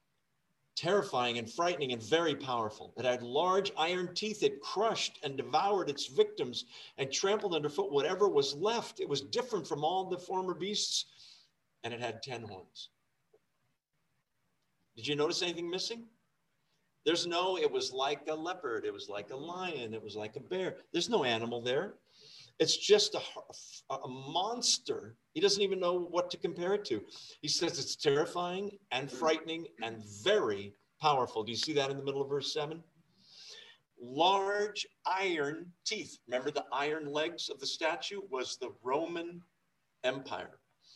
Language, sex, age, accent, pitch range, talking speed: English, male, 50-69, American, 140-200 Hz, 160 wpm